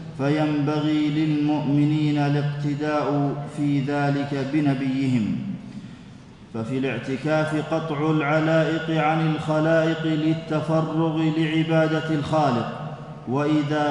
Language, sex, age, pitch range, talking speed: Arabic, male, 40-59, 145-155 Hz, 70 wpm